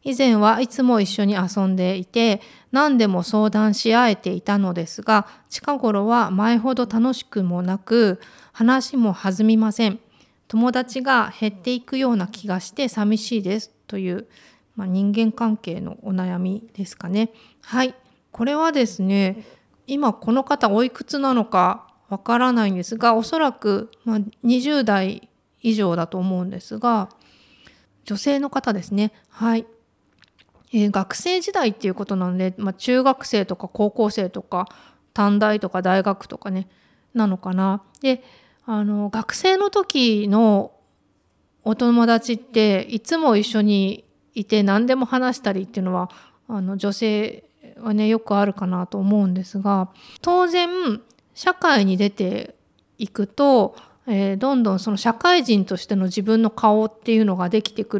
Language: Japanese